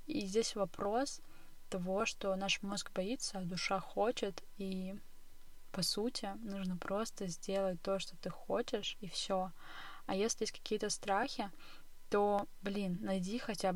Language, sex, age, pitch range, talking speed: Russian, female, 20-39, 185-210 Hz, 140 wpm